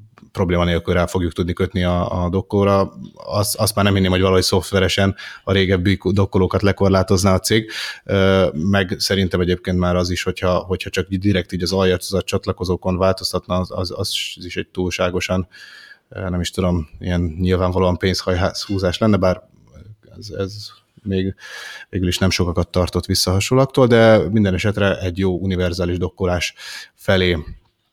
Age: 30-49